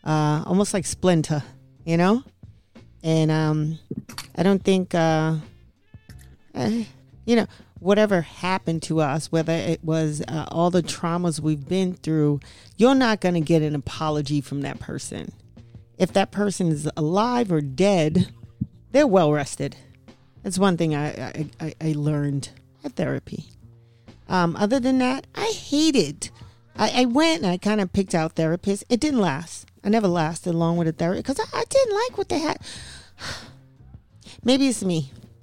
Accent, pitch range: American, 145-200 Hz